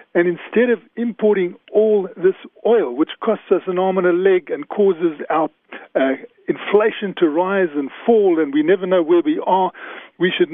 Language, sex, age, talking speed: English, male, 50-69, 190 wpm